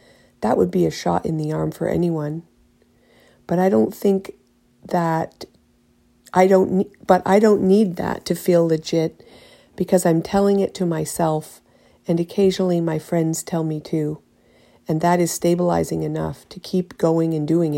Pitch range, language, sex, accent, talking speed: 150-185 Hz, English, female, American, 165 wpm